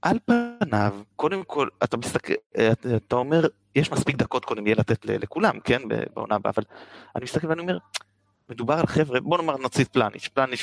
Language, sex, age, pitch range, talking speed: Hebrew, male, 30-49, 110-165 Hz, 175 wpm